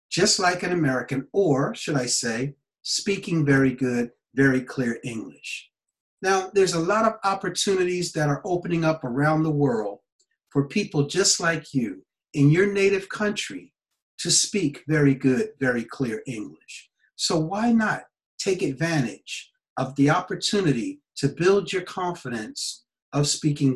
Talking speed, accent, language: 145 wpm, American, English